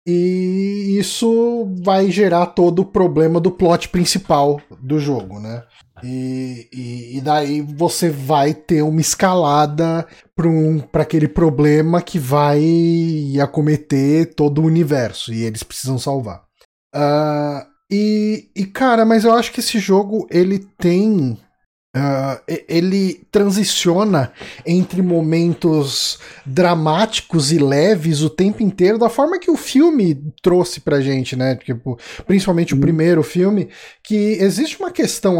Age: 20-39